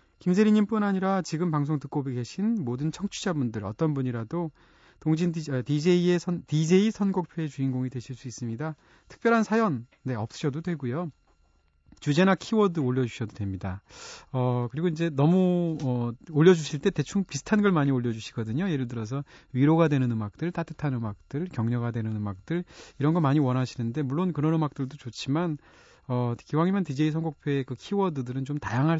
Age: 30-49